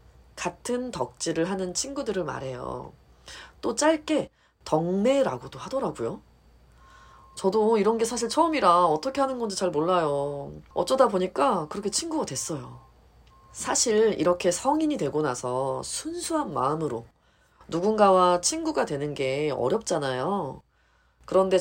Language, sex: Korean, female